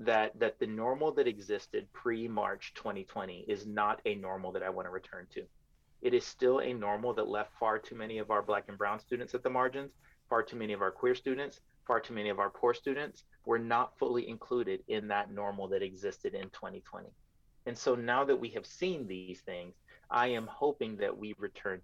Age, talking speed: 30-49, 210 wpm